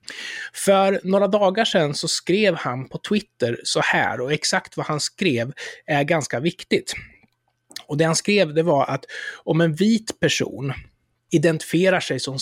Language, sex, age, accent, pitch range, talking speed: Swedish, male, 20-39, native, 130-175 Hz, 160 wpm